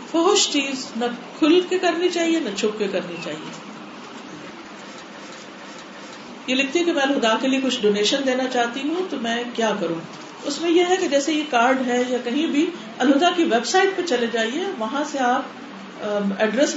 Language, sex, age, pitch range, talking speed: Urdu, female, 50-69, 220-285 Hz, 185 wpm